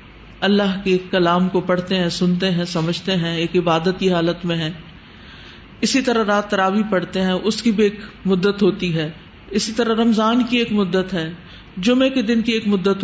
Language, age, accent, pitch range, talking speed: English, 50-69, Indian, 185-230 Hz, 190 wpm